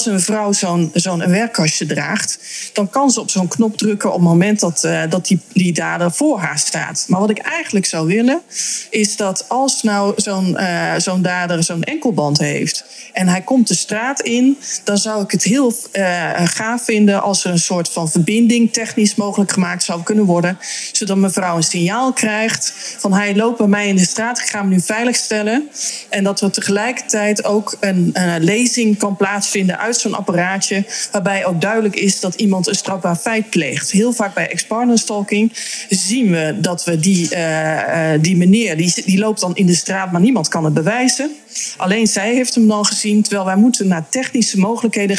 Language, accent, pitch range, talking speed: Dutch, Dutch, 180-220 Hz, 195 wpm